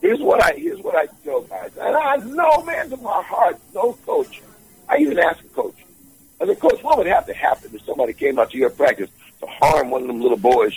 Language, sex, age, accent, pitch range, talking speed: English, male, 60-79, American, 290-445 Hz, 245 wpm